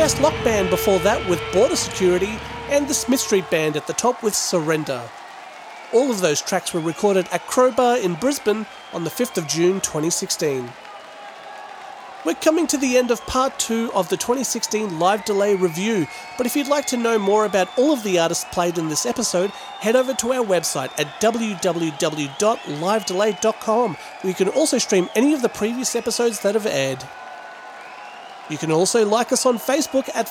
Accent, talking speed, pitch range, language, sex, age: Australian, 180 wpm, 185-255 Hz, English, male, 40-59